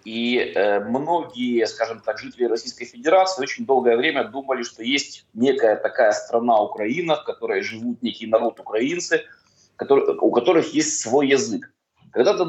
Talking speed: 145 wpm